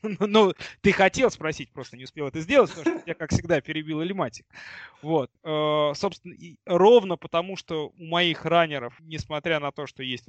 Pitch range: 130-160 Hz